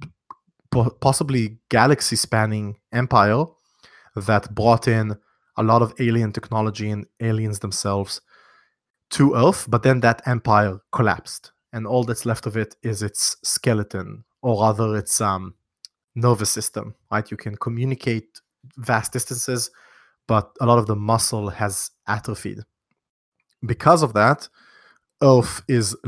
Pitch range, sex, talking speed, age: 105-125 Hz, male, 125 wpm, 30-49